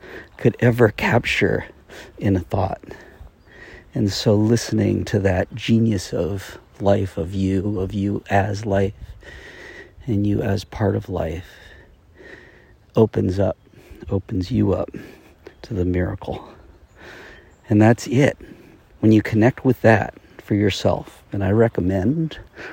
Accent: American